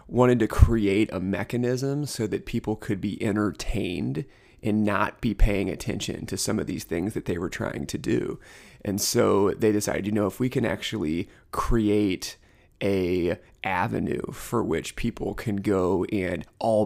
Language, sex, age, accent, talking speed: English, male, 30-49, American, 165 wpm